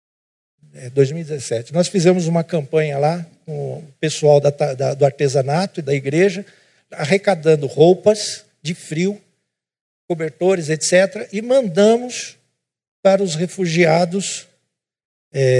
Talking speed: 95 wpm